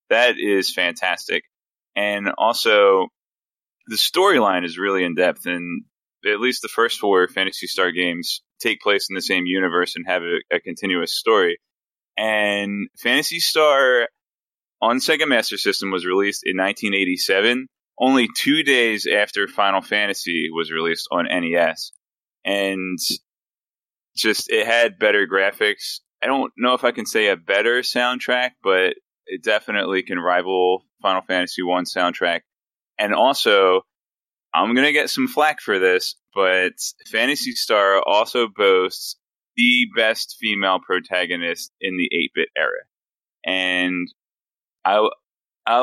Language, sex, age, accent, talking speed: English, male, 20-39, American, 135 wpm